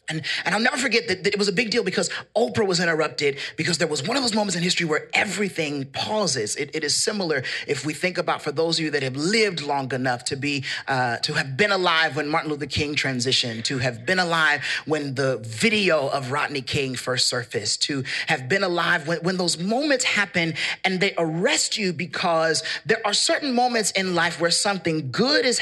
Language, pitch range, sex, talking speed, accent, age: English, 140-195 Hz, male, 220 wpm, American, 30-49